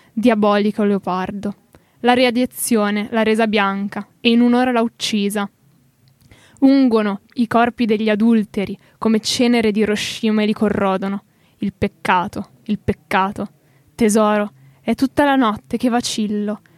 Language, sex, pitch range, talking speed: Italian, female, 200-235 Hz, 125 wpm